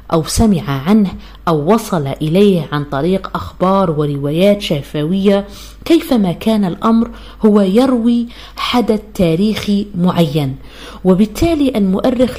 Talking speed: 100 wpm